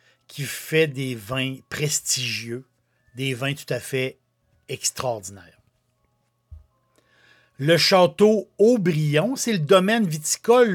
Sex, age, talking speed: male, 60-79, 100 wpm